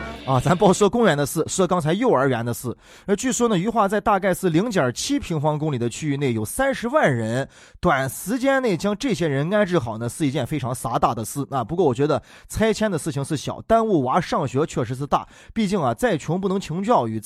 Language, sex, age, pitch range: Chinese, male, 20-39, 145-220 Hz